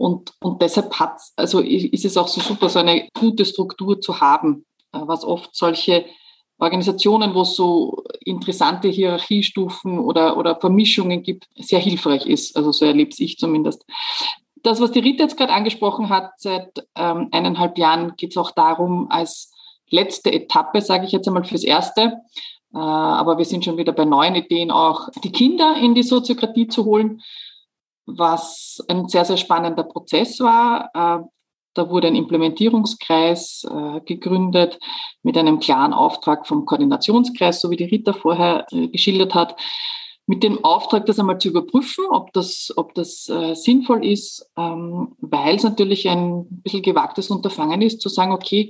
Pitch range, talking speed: 175-245 Hz, 155 wpm